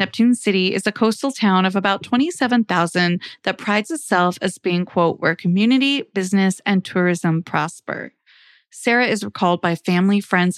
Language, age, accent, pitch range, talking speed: English, 30-49, American, 175-210 Hz, 155 wpm